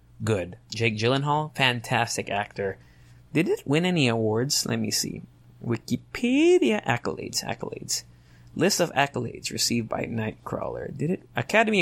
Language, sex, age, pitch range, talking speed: English, male, 20-39, 110-140 Hz, 125 wpm